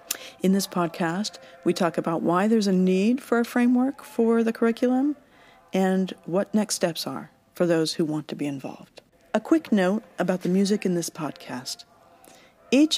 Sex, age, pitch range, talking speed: female, 40-59, 165-205 Hz, 175 wpm